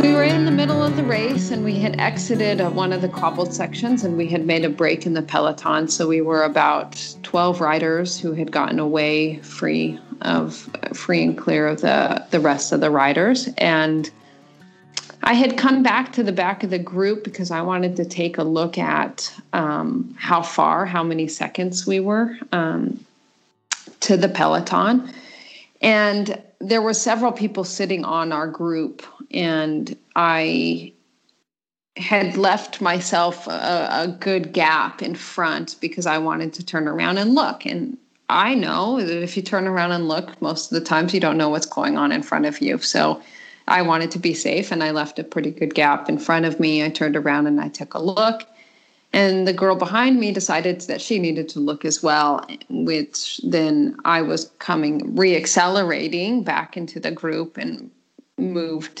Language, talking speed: Hebrew, 185 wpm